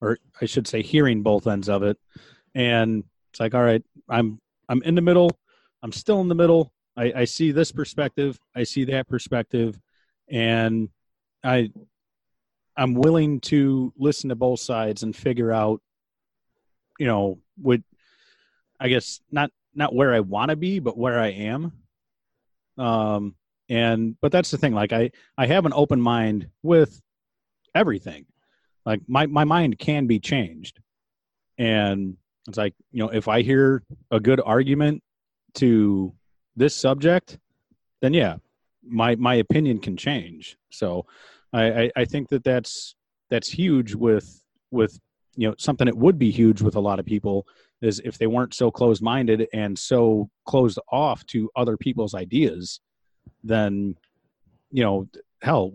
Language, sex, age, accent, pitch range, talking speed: English, male, 30-49, American, 110-135 Hz, 155 wpm